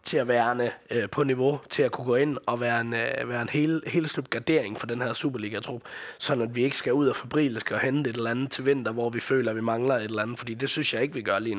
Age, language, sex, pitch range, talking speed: 20-39, Danish, male, 115-135 Hz, 285 wpm